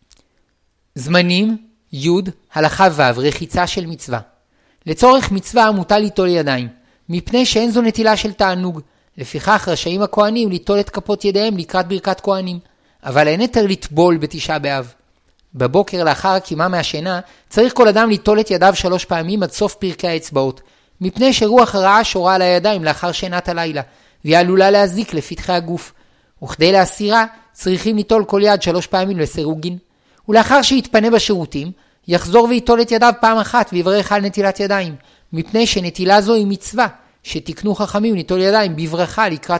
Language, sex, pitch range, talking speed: Hebrew, male, 165-210 Hz, 145 wpm